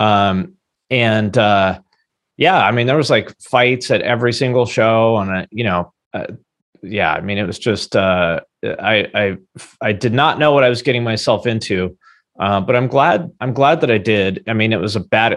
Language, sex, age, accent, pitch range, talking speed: English, male, 30-49, American, 105-130 Hz, 205 wpm